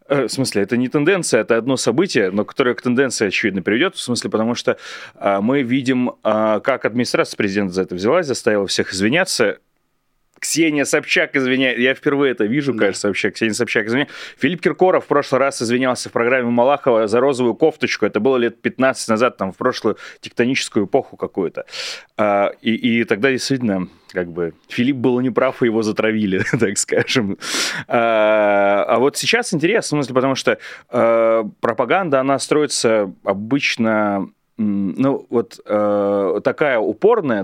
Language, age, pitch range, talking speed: Russian, 30-49, 105-135 Hz, 150 wpm